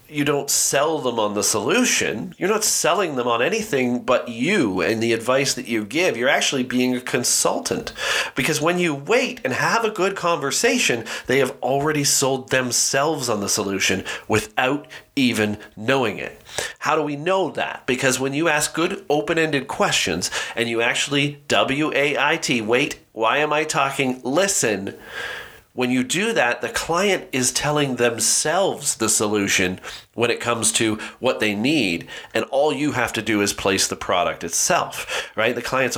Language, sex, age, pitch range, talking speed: English, male, 40-59, 125-160 Hz, 170 wpm